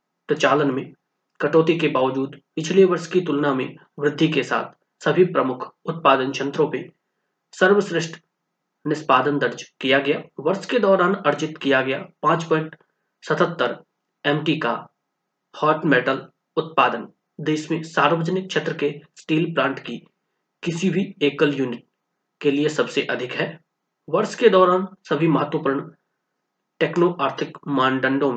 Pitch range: 140-180 Hz